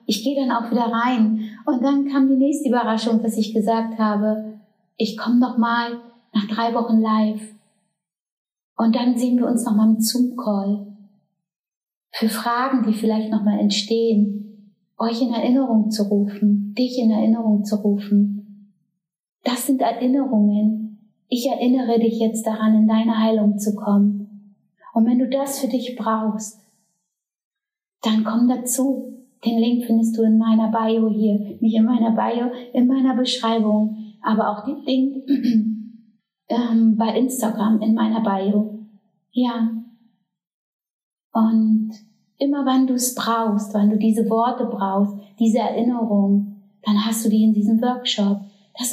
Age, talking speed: 20-39, 145 wpm